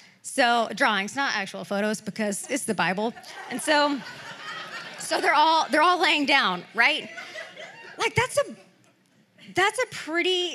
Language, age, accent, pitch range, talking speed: English, 20-39, American, 220-295 Hz, 140 wpm